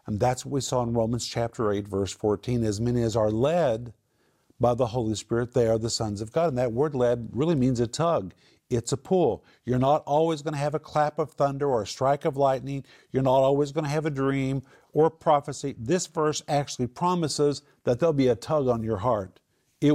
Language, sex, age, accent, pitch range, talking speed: English, male, 50-69, American, 120-150 Hz, 225 wpm